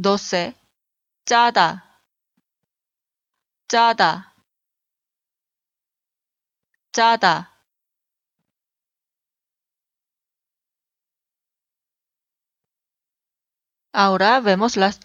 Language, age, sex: Korean, 30-49, female